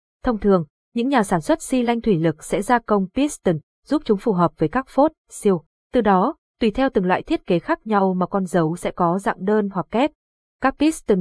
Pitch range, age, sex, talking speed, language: 180-235 Hz, 20-39, female, 230 wpm, Vietnamese